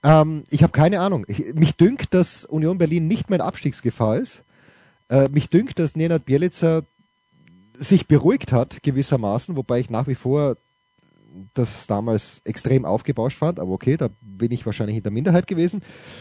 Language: German